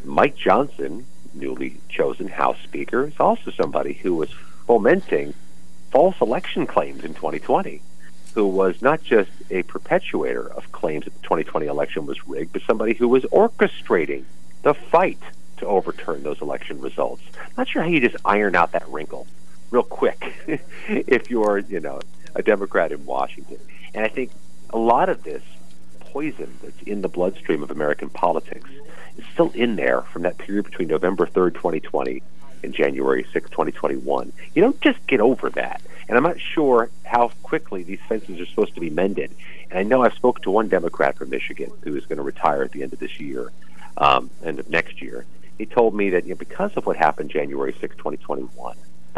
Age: 50-69